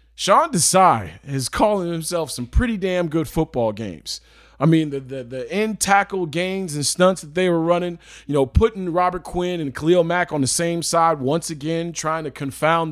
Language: English